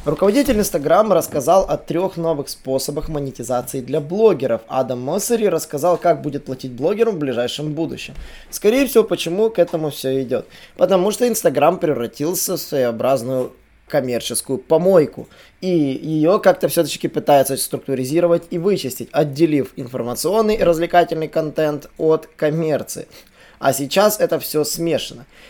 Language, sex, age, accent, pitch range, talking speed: Russian, male, 20-39, native, 140-185 Hz, 130 wpm